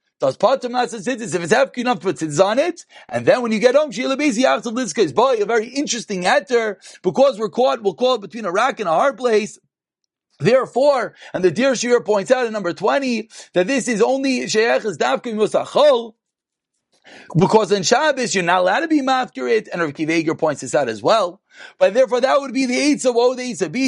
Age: 40-59